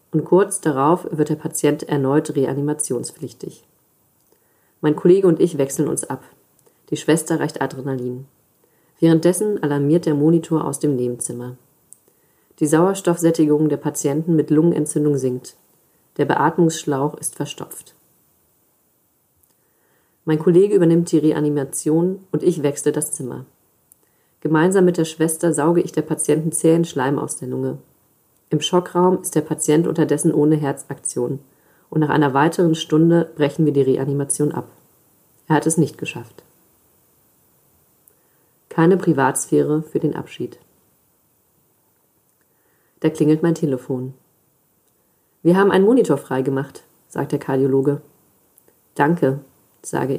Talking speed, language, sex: 120 wpm, German, female